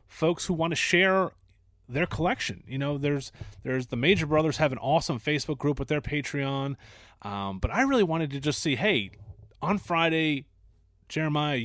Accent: American